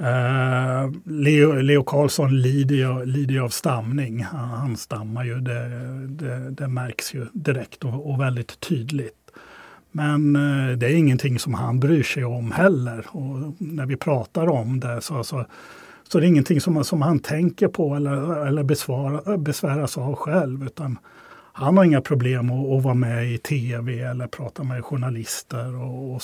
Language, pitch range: Swedish, 120-145 Hz